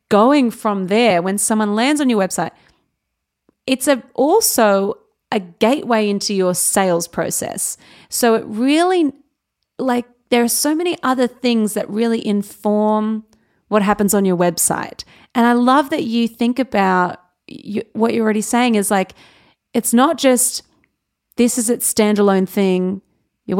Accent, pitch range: Australian, 205-250 Hz